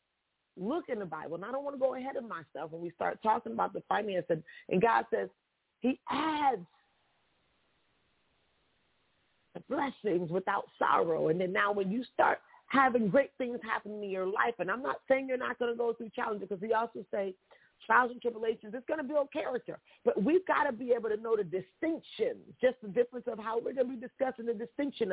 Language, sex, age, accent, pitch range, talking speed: English, female, 40-59, American, 210-285 Hz, 210 wpm